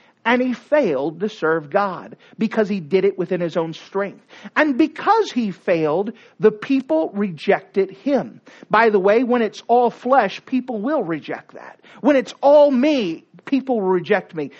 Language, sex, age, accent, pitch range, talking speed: English, male, 40-59, American, 195-275 Hz, 170 wpm